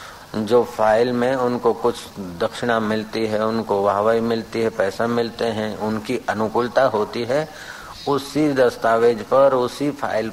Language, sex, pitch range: Hindi, male, 110-135 Hz